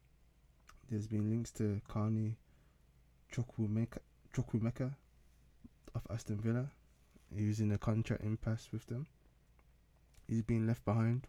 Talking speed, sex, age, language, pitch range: 105 wpm, male, 20-39, English, 95-115 Hz